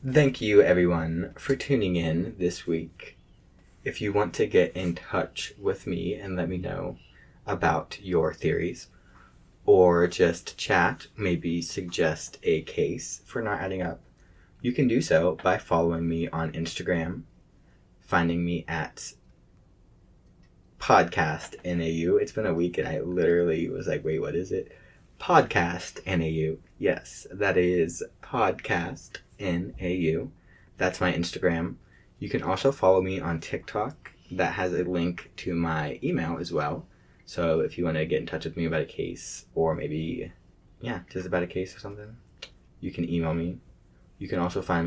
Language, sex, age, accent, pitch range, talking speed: English, male, 20-39, American, 85-95 Hz, 160 wpm